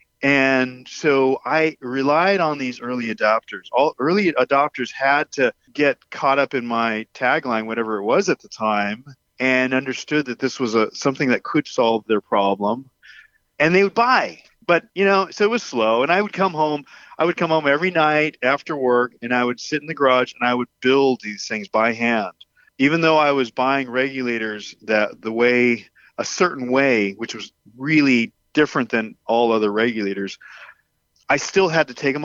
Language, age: English, 40-59